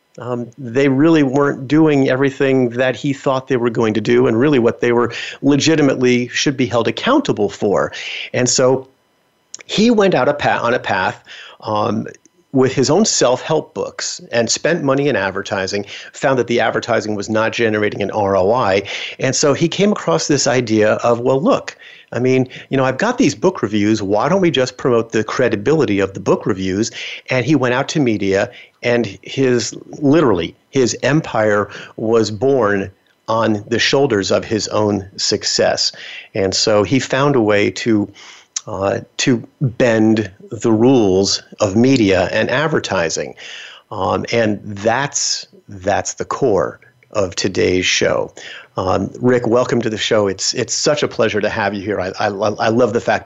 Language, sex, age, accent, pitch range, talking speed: English, male, 50-69, American, 105-135 Hz, 170 wpm